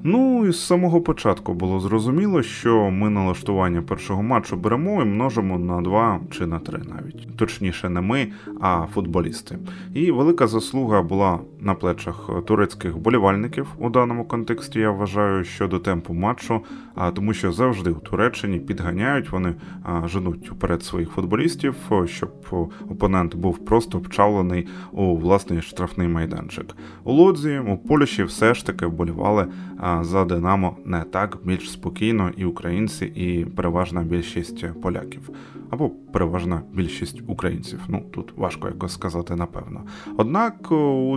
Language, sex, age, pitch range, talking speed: Ukrainian, male, 20-39, 90-115 Hz, 135 wpm